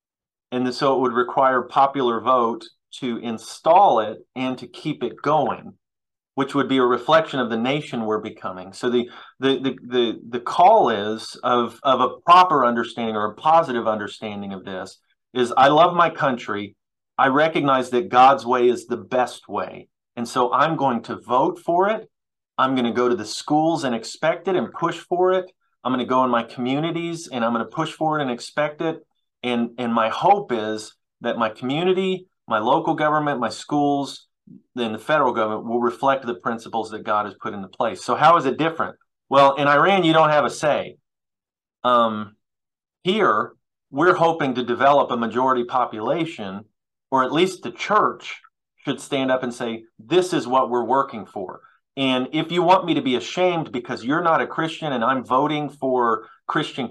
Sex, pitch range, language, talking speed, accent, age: male, 115-150 Hz, English, 190 wpm, American, 30-49